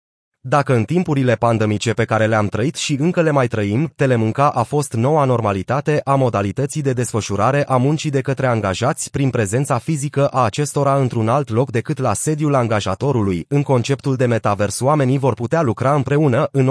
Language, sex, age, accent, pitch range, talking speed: Romanian, male, 30-49, native, 115-145 Hz, 175 wpm